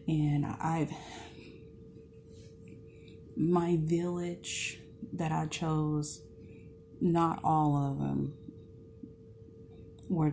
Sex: female